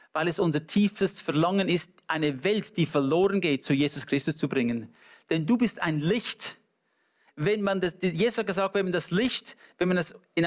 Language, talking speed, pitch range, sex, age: English, 205 wpm, 140-175 Hz, male, 50-69